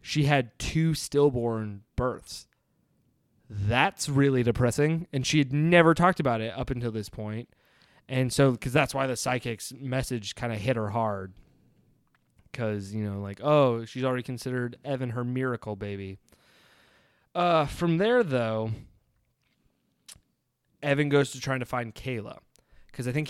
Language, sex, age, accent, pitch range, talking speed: English, male, 20-39, American, 115-165 Hz, 150 wpm